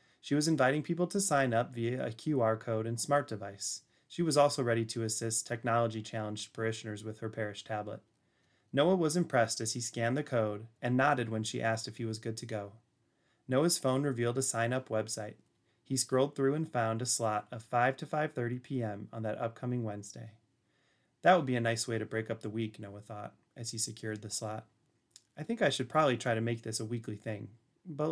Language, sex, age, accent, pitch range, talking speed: English, male, 30-49, American, 110-135 Hz, 210 wpm